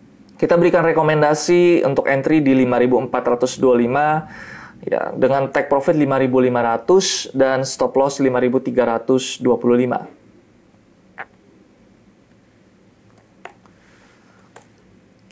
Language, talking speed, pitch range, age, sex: Indonesian, 65 wpm, 125-160 Hz, 20-39, male